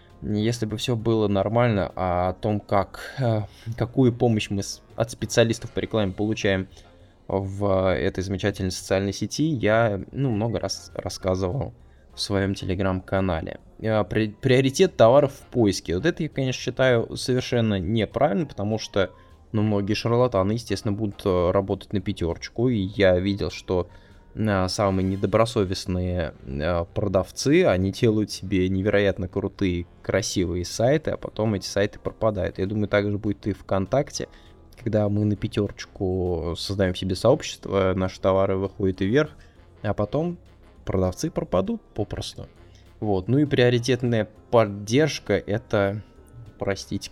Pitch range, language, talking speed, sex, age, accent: 95-110 Hz, Russian, 125 wpm, male, 20-39, native